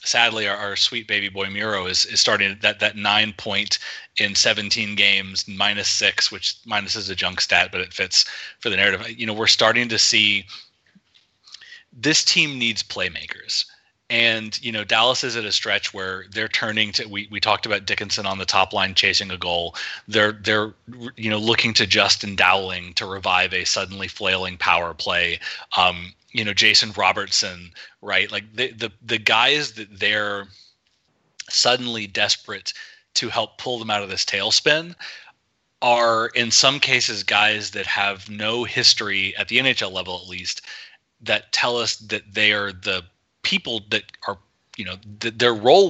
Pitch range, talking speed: 100-115 Hz, 175 wpm